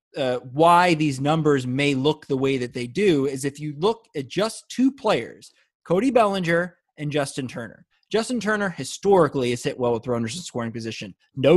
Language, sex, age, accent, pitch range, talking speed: English, male, 30-49, American, 130-180 Hz, 185 wpm